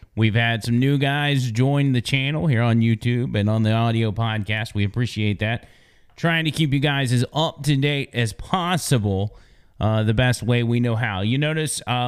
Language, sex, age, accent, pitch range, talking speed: English, male, 30-49, American, 115-150 Hz, 190 wpm